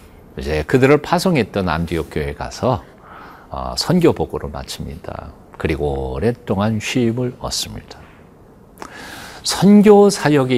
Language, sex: Korean, male